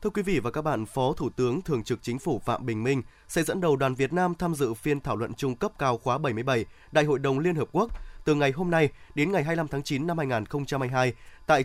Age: 20-39